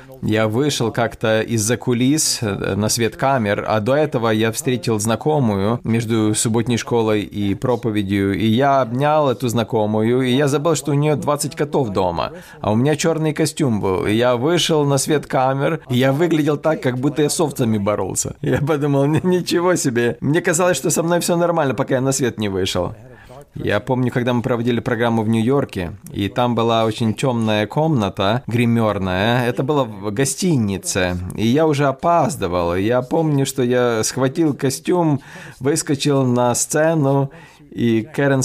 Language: Russian